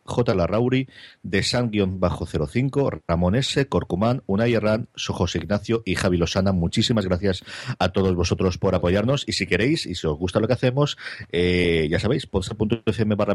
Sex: male